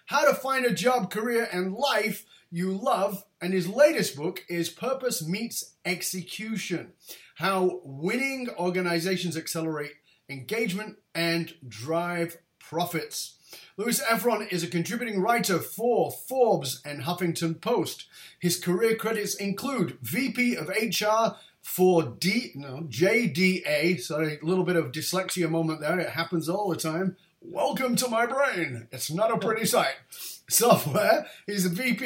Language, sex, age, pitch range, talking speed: English, male, 30-49, 170-225 Hz, 135 wpm